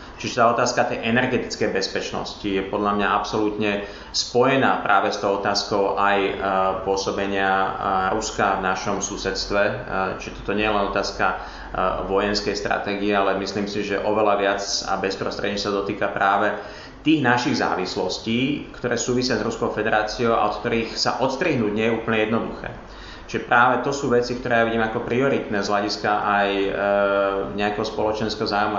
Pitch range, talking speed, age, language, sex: 100-110 Hz, 150 wpm, 30-49, Slovak, male